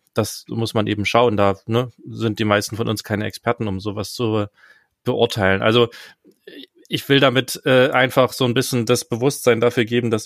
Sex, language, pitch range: male, German, 110-125 Hz